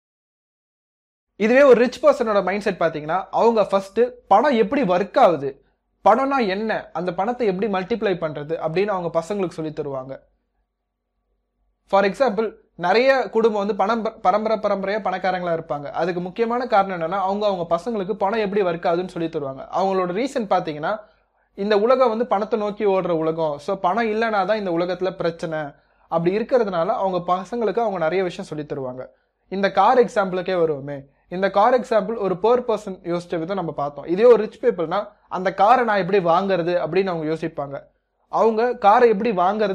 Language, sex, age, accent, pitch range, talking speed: Tamil, male, 20-39, native, 170-220 Hz, 140 wpm